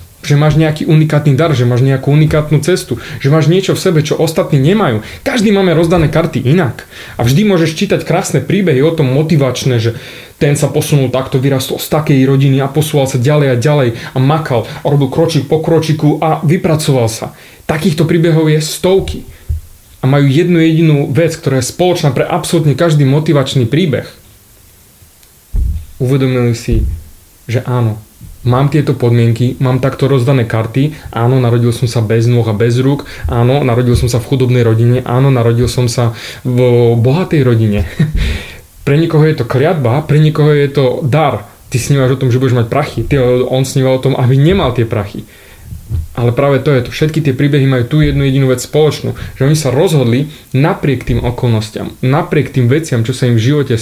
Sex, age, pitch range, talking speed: male, 30-49, 120-150 Hz, 180 wpm